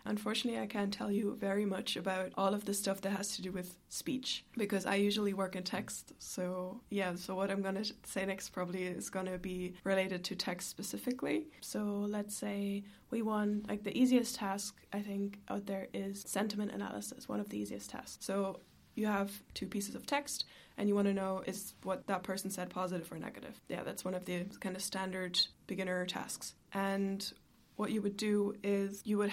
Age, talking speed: 20-39, 205 wpm